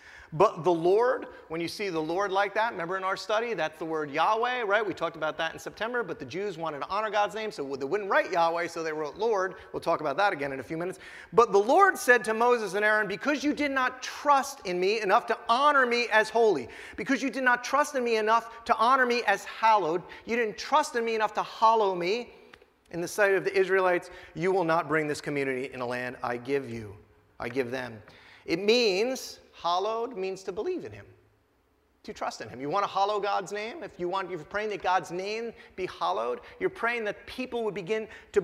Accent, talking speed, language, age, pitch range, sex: American, 235 wpm, English, 30-49, 170-235 Hz, male